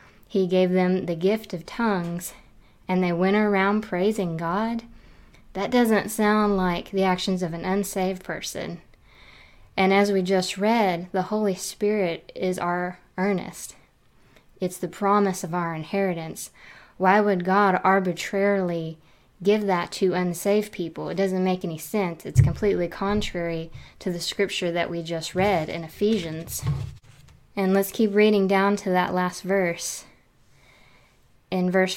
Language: English